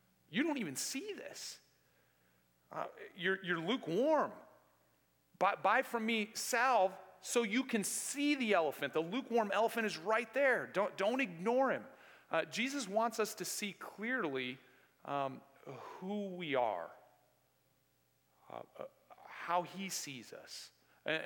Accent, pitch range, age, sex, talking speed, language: American, 130-205 Hz, 40-59, male, 135 wpm, English